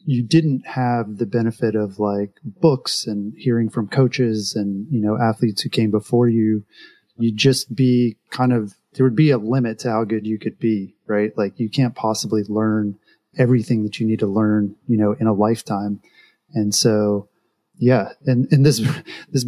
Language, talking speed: English, 185 wpm